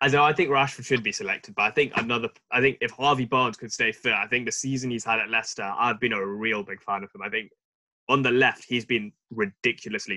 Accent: British